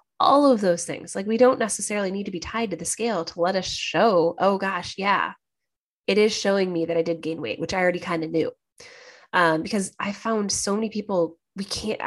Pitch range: 180-240 Hz